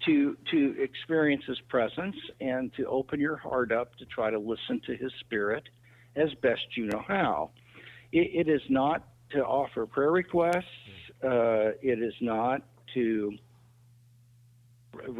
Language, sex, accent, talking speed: English, male, American, 145 wpm